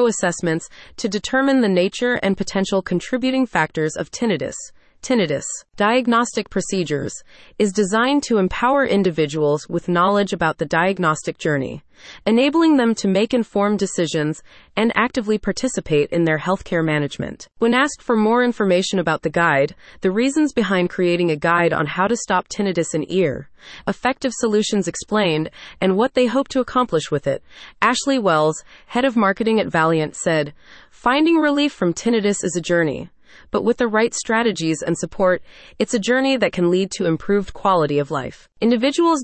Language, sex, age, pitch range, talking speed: English, female, 30-49, 170-230 Hz, 160 wpm